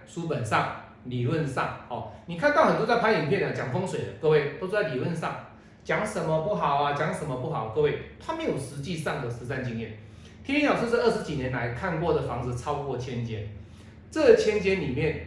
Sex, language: male, Chinese